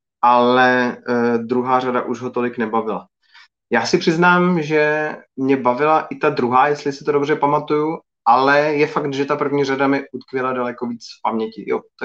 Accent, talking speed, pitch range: native, 185 wpm, 120-145 Hz